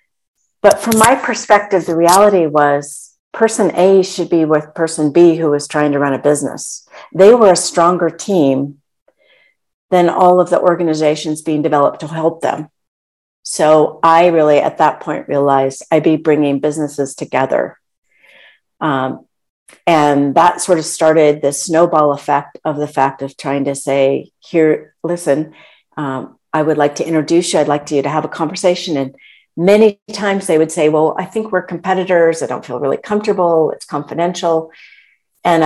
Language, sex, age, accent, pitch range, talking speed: English, female, 50-69, American, 150-185 Hz, 165 wpm